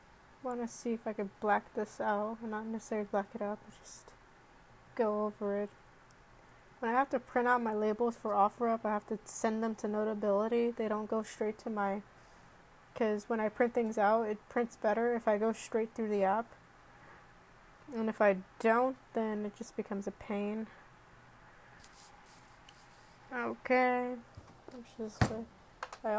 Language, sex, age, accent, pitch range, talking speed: English, female, 20-39, American, 210-235 Hz, 160 wpm